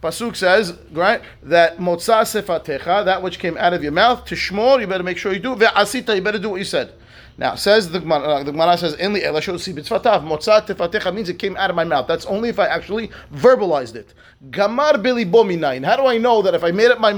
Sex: male